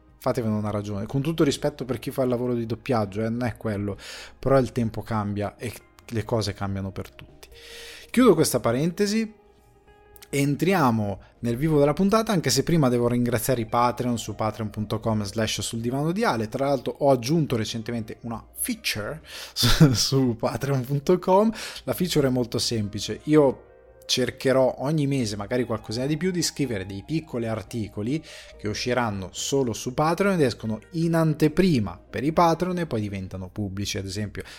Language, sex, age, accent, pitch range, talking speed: Italian, male, 20-39, native, 110-150 Hz, 165 wpm